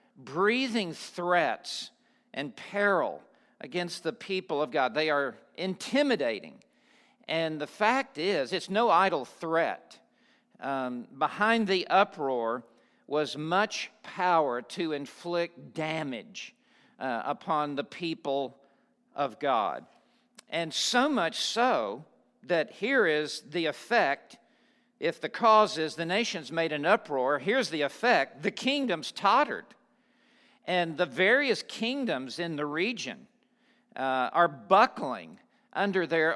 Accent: American